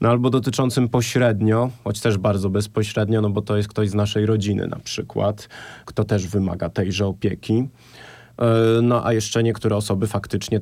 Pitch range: 105-125 Hz